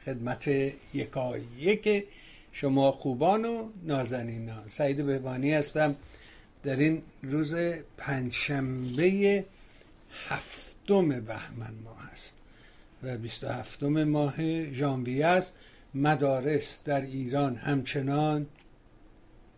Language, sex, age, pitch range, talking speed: Persian, male, 60-79, 125-155 Hz, 90 wpm